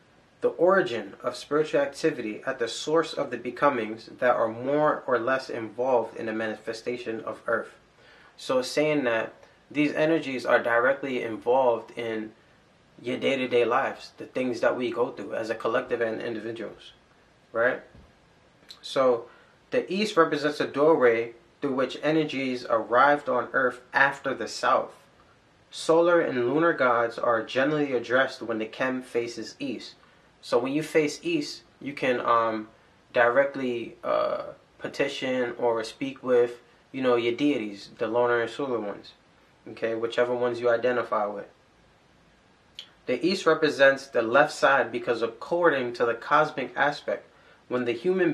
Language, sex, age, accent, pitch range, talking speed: English, male, 20-39, American, 120-150 Hz, 145 wpm